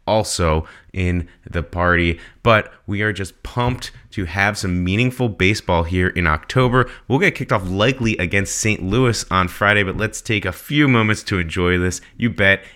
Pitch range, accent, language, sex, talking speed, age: 85-110 Hz, American, English, male, 180 wpm, 30-49